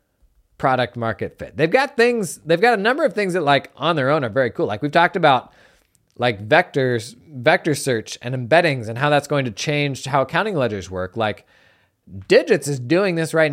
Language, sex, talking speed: English, male, 205 wpm